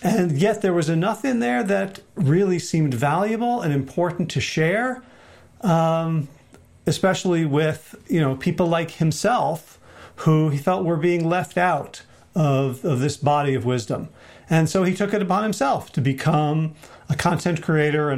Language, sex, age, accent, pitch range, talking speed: English, male, 40-59, American, 145-180 Hz, 155 wpm